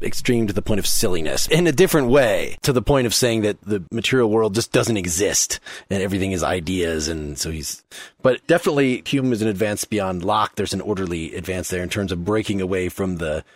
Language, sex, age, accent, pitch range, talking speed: English, male, 30-49, American, 105-140 Hz, 215 wpm